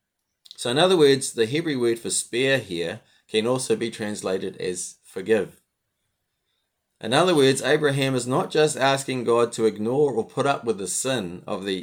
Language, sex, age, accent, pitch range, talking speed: English, male, 30-49, Australian, 95-125 Hz, 180 wpm